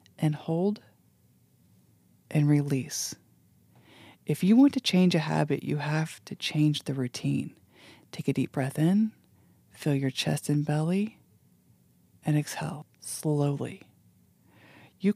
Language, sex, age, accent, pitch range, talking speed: English, female, 40-59, American, 145-175 Hz, 125 wpm